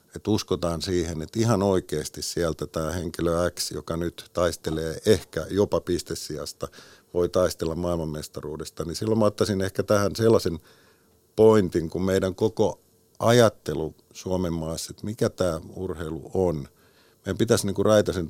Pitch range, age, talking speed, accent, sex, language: 80-100 Hz, 50-69, 140 wpm, native, male, Finnish